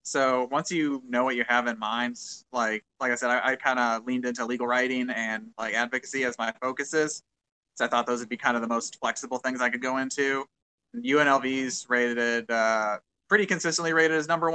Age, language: 20-39, English